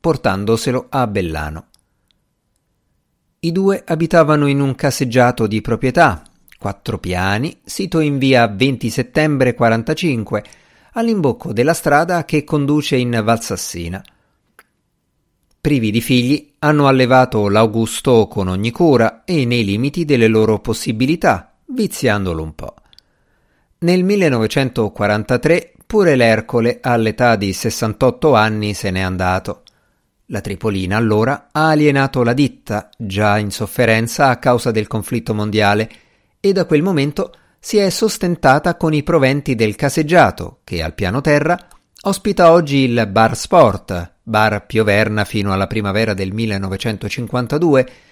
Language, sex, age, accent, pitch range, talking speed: Italian, male, 50-69, native, 110-155 Hz, 120 wpm